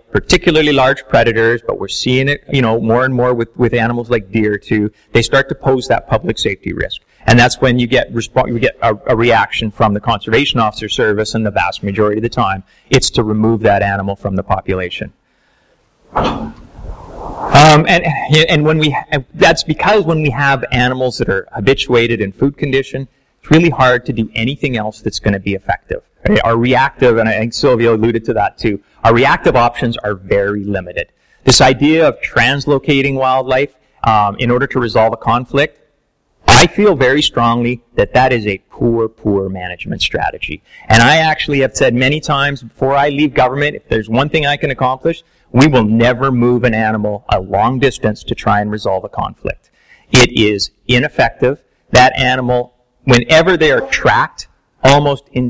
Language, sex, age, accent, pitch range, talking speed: English, male, 30-49, American, 110-140 Hz, 185 wpm